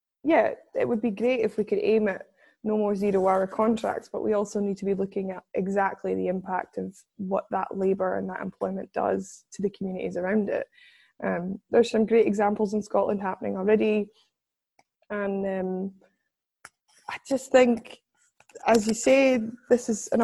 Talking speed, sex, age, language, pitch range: 170 wpm, female, 20-39, English, 190-220 Hz